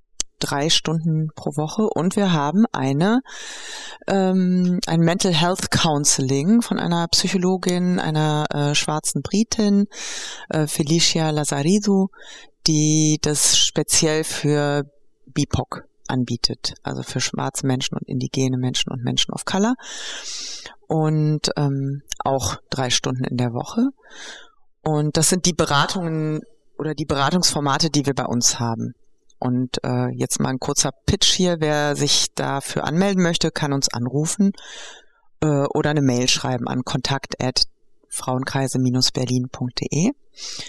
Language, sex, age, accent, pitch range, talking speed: German, female, 30-49, German, 140-185 Hz, 125 wpm